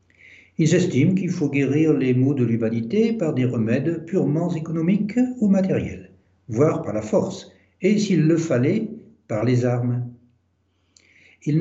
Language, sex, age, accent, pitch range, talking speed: French, male, 60-79, French, 115-160 Hz, 145 wpm